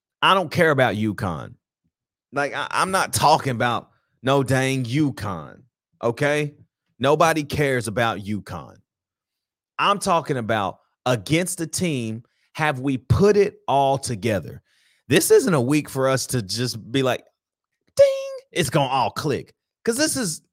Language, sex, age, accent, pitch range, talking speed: English, male, 30-49, American, 115-160 Hz, 145 wpm